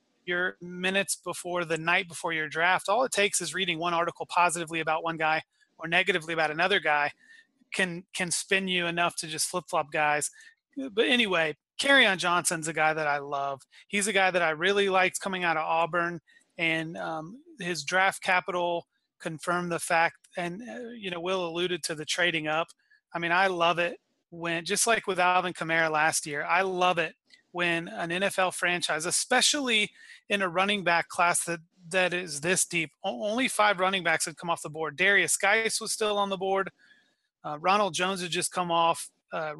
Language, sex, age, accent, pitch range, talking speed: English, male, 30-49, American, 165-195 Hz, 190 wpm